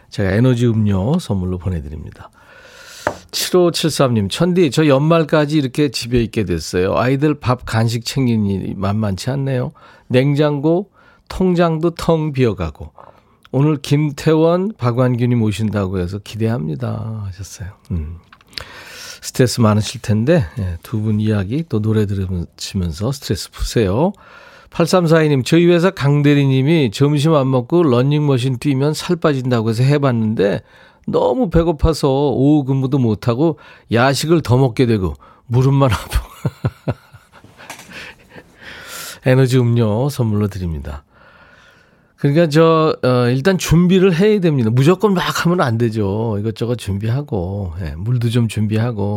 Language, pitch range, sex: Korean, 105-150 Hz, male